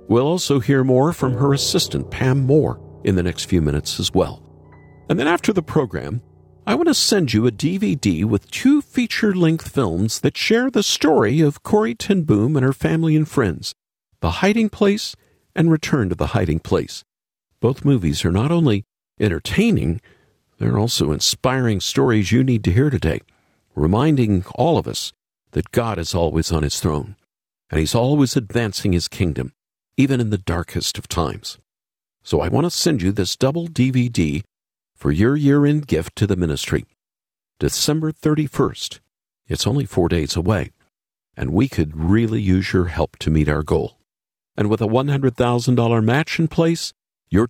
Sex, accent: male, American